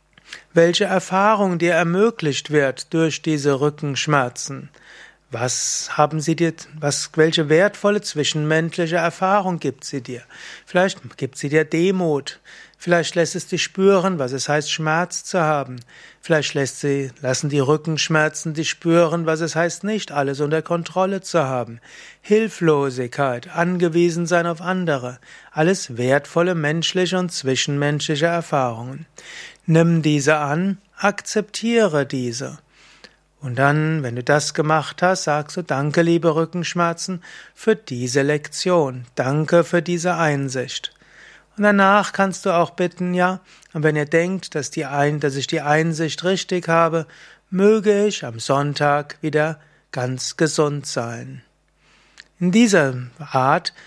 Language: German